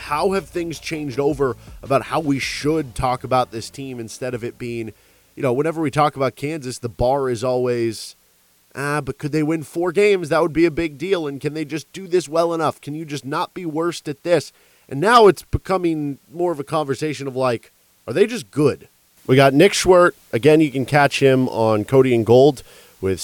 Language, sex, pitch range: English, male, 115-155 Hz